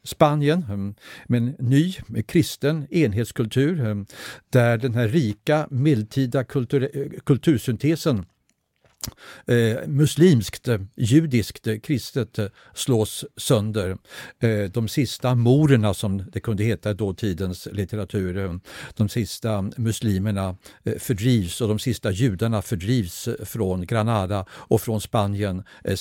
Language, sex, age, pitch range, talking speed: Swedish, male, 60-79, 105-135 Hz, 100 wpm